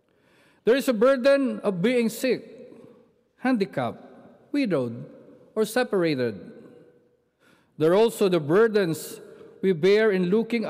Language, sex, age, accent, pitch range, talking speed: English, male, 50-69, Filipino, 170-245 Hz, 110 wpm